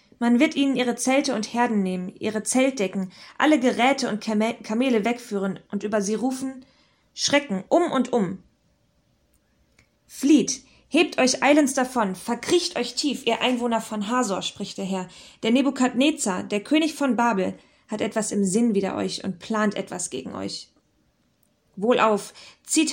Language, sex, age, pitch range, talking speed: German, female, 20-39, 205-255 Hz, 150 wpm